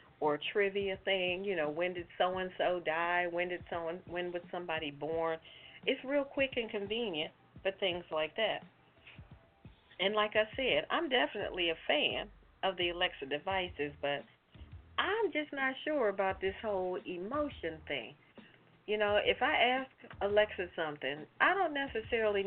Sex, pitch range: female, 165-215 Hz